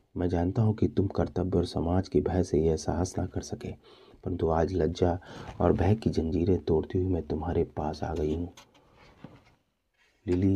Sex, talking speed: male, 180 wpm